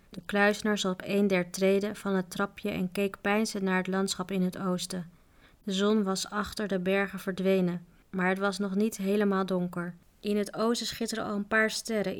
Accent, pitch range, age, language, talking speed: Dutch, 185-210 Hz, 20-39, Dutch, 195 wpm